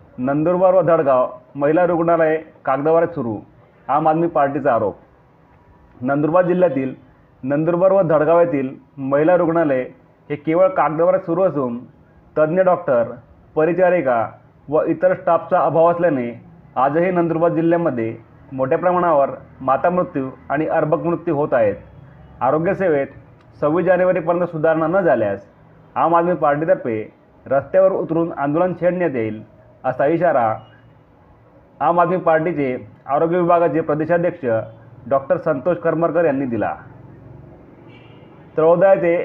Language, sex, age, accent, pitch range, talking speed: Marathi, male, 30-49, native, 140-175 Hz, 110 wpm